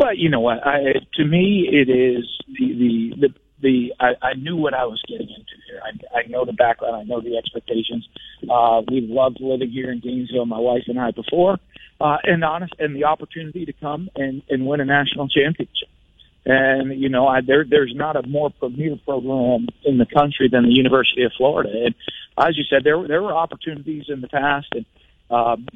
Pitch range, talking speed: 130-150 Hz, 210 wpm